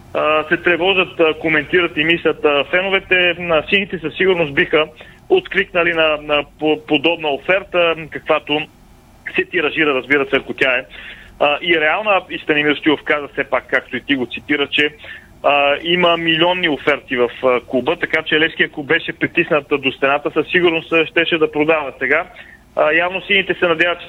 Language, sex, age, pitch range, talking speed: Bulgarian, male, 30-49, 145-170 Hz, 150 wpm